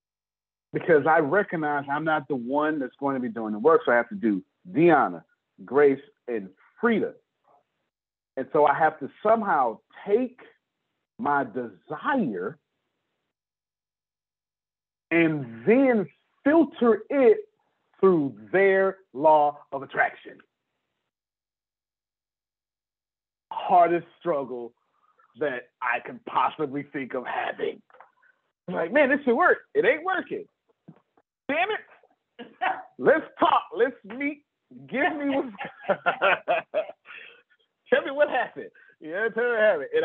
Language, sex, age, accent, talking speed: English, male, 40-59, American, 110 wpm